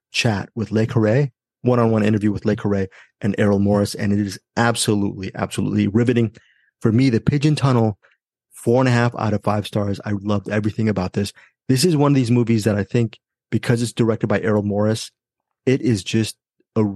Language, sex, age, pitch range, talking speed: English, male, 30-49, 105-135 Hz, 195 wpm